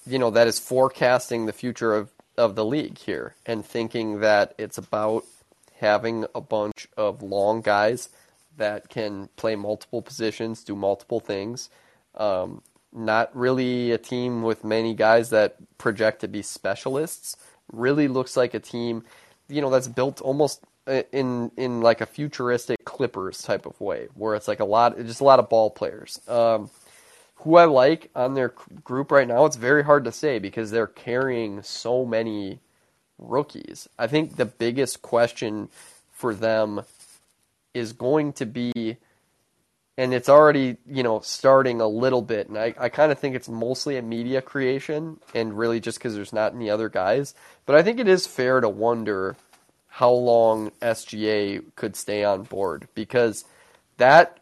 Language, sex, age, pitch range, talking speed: English, male, 20-39, 110-130 Hz, 165 wpm